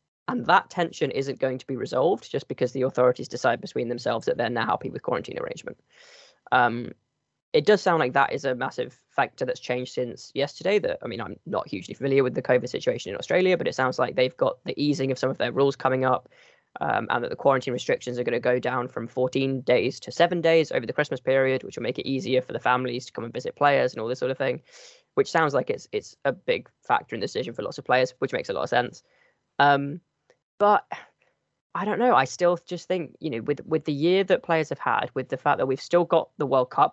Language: English